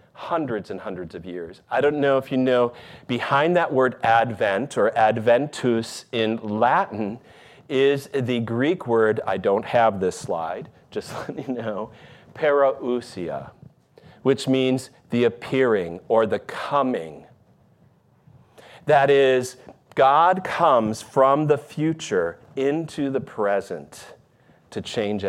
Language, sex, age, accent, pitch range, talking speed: English, male, 40-59, American, 115-145 Hz, 125 wpm